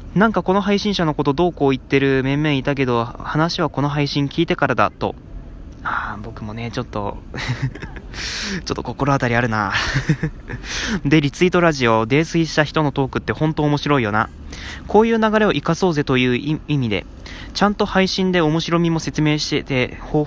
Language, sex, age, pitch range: Japanese, male, 20-39, 115-160 Hz